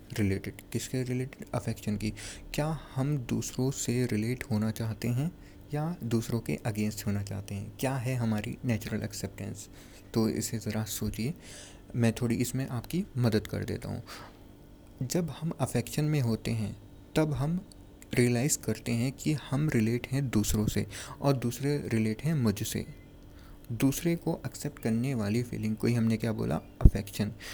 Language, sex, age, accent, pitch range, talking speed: Hindi, male, 20-39, native, 105-130 Hz, 155 wpm